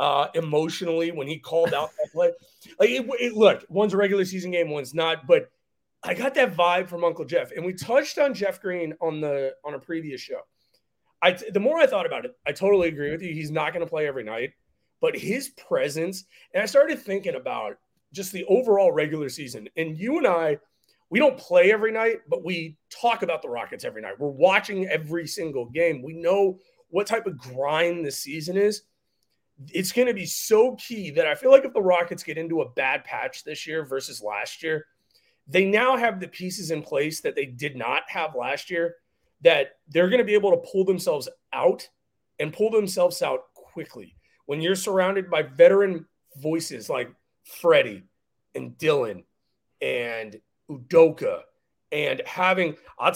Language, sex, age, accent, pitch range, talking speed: English, male, 30-49, American, 160-235 Hz, 190 wpm